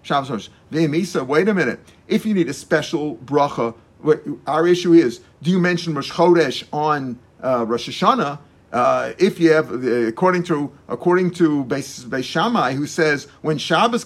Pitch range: 150-175 Hz